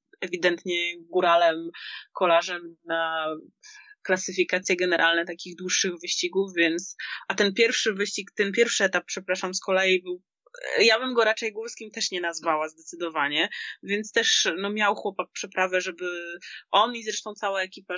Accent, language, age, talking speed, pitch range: native, Polish, 20-39, 140 wpm, 175-210 Hz